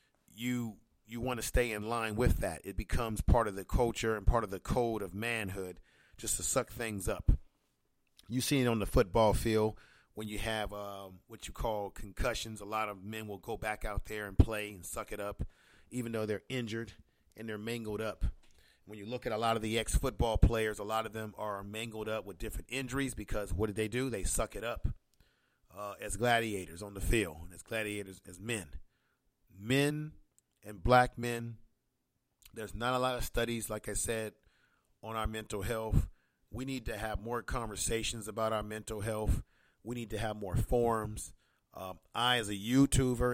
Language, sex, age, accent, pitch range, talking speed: English, male, 40-59, American, 100-115 Hz, 200 wpm